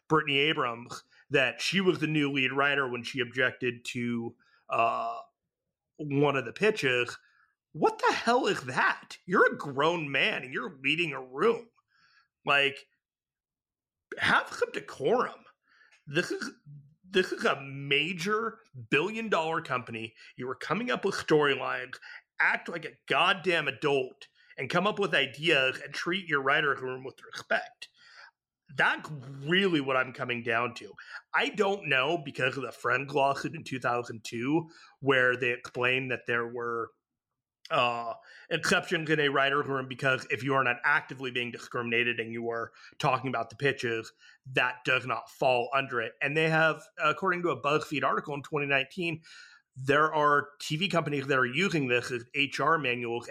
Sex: male